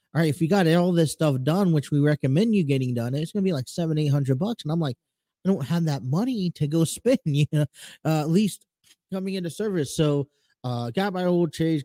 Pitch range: 130-155 Hz